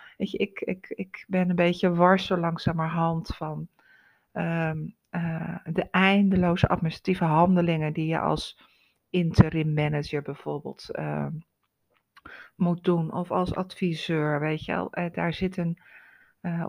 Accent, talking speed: Dutch, 120 wpm